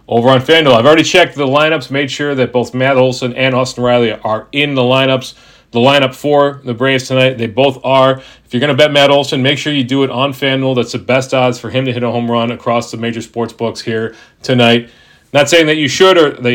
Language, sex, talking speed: English, male, 245 wpm